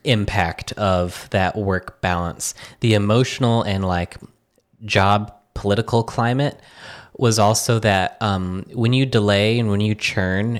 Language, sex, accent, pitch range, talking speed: English, male, American, 95-115 Hz, 130 wpm